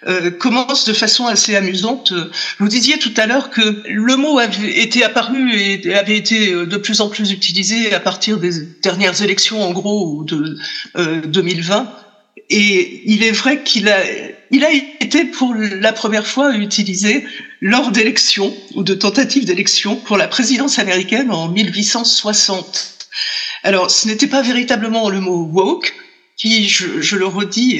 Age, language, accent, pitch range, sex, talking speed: 50-69, French, French, 190-250 Hz, female, 165 wpm